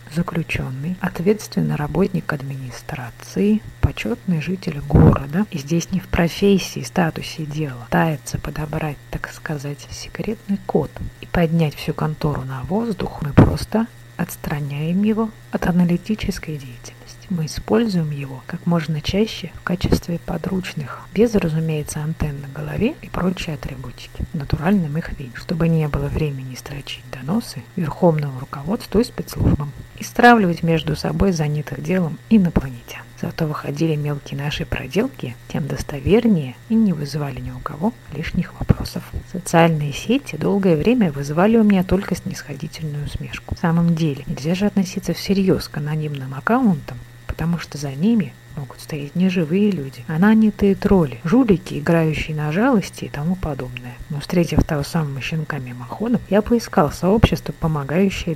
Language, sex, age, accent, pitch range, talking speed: Russian, female, 30-49, native, 145-190 Hz, 140 wpm